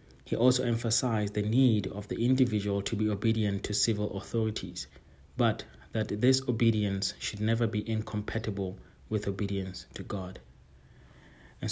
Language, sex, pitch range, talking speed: English, male, 100-115 Hz, 140 wpm